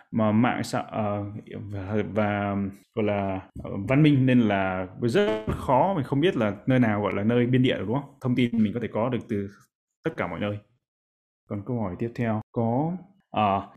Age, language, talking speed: 20-39, Vietnamese, 205 wpm